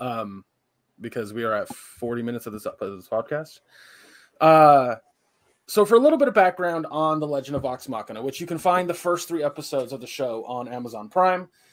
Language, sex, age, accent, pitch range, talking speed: English, male, 20-39, American, 125-160 Hz, 200 wpm